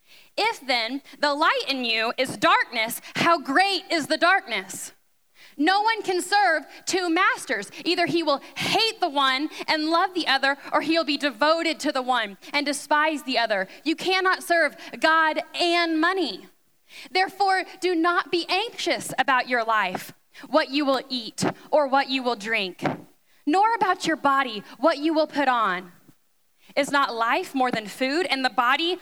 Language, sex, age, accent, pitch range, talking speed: English, female, 10-29, American, 270-345 Hz, 165 wpm